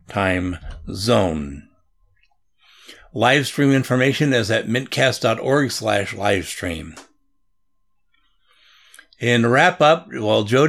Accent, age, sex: American, 60-79, male